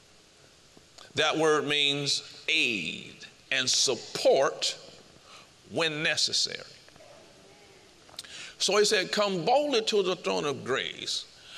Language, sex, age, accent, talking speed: English, male, 50-69, American, 95 wpm